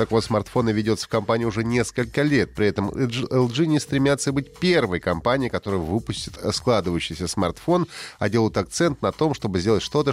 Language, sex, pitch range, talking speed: Russian, male, 95-135 Hz, 170 wpm